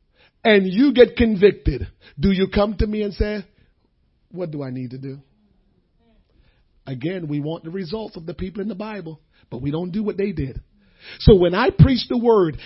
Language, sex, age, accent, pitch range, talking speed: English, male, 40-59, American, 145-215 Hz, 195 wpm